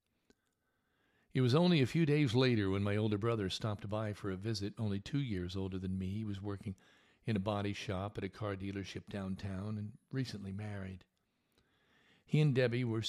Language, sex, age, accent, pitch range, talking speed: English, male, 50-69, American, 100-120 Hz, 190 wpm